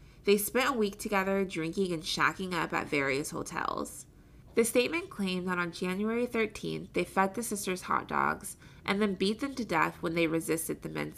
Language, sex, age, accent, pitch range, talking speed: English, female, 20-39, American, 160-220 Hz, 195 wpm